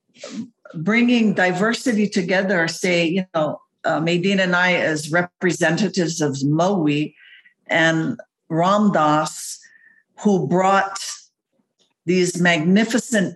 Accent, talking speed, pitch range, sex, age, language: American, 90 wpm, 165-215 Hz, female, 60-79, English